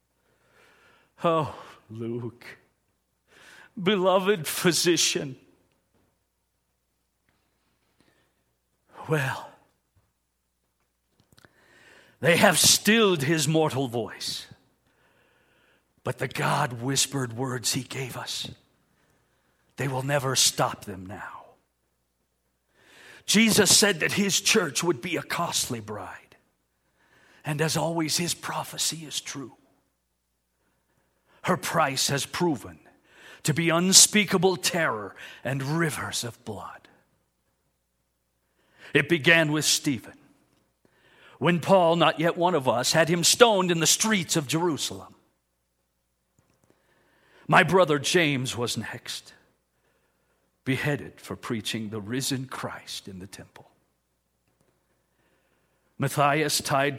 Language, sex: English, male